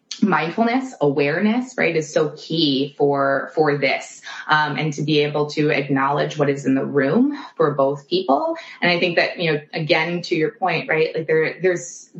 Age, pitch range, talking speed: 20-39, 140-175 Hz, 185 wpm